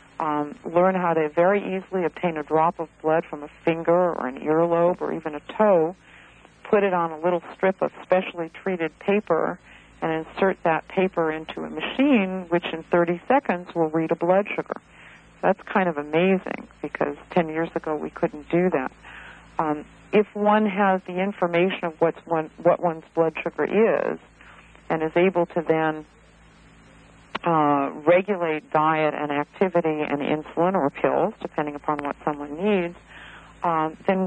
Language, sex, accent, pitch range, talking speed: English, female, American, 160-195 Hz, 160 wpm